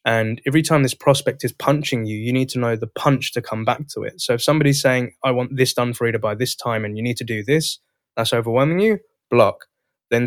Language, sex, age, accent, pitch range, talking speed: English, male, 10-29, British, 110-135 Hz, 250 wpm